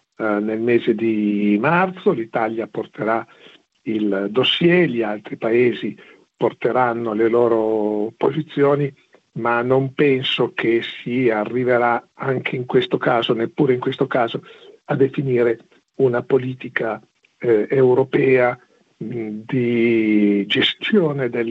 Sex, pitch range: male, 115-145 Hz